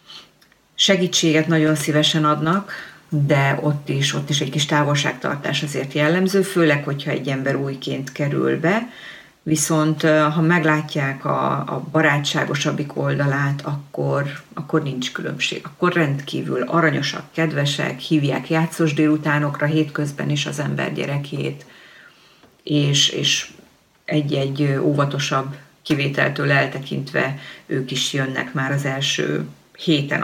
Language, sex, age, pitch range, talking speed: Hungarian, female, 40-59, 140-165 Hz, 110 wpm